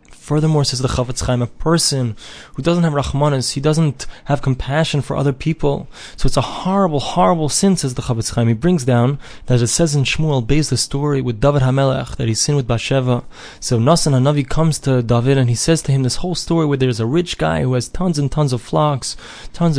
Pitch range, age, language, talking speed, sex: 130-165 Hz, 20-39, English, 225 wpm, male